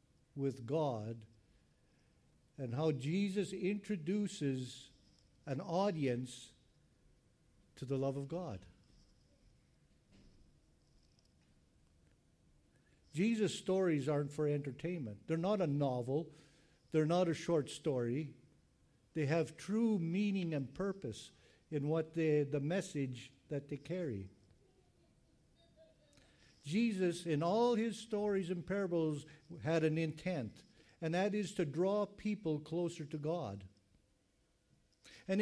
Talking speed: 105 wpm